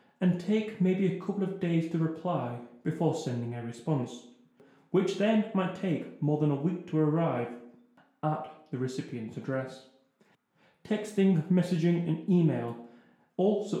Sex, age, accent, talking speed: male, 30-49, British, 140 wpm